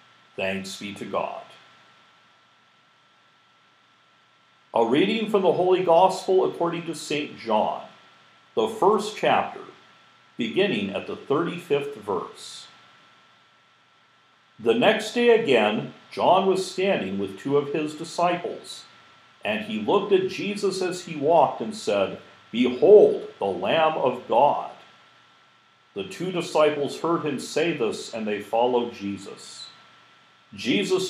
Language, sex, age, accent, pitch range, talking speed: English, male, 50-69, American, 150-205 Hz, 120 wpm